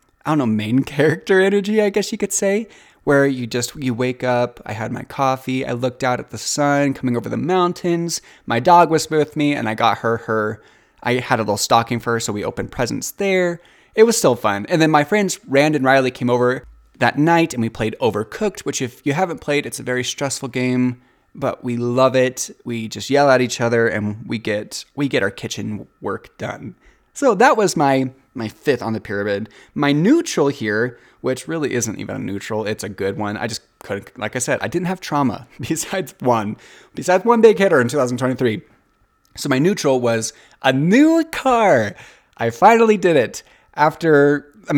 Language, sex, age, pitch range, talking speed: English, male, 20-39, 115-150 Hz, 205 wpm